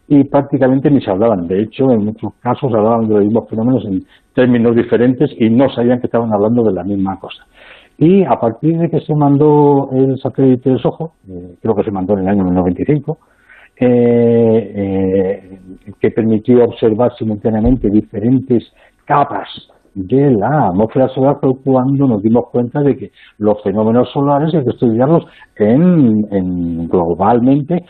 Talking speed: 165 wpm